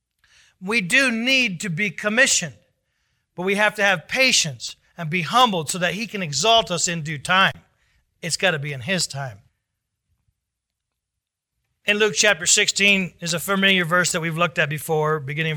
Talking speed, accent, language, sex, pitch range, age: 175 wpm, American, English, male, 160-200 Hz, 40-59